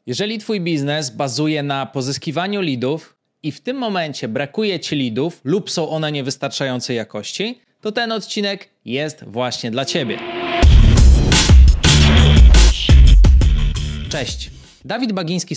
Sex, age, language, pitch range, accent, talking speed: male, 20-39, Polish, 140-185 Hz, native, 110 wpm